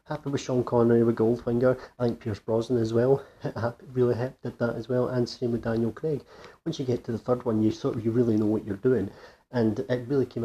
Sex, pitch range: male, 105-120 Hz